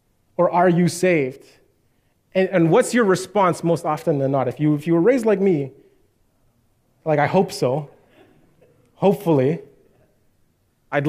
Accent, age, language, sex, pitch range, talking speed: American, 20-39, English, male, 130-180 Hz, 145 wpm